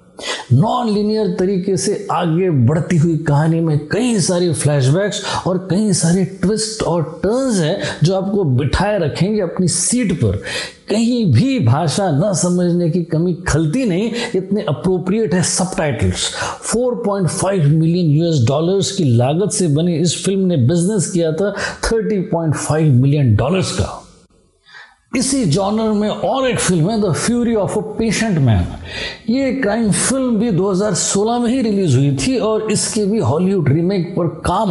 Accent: native